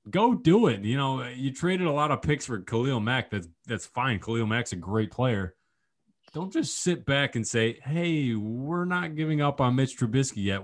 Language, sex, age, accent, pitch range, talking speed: English, male, 20-39, American, 105-140 Hz, 210 wpm